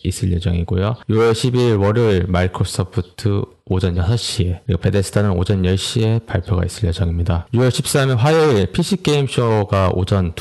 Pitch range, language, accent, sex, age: 90-110 Hz, Korean, native, male, 20-39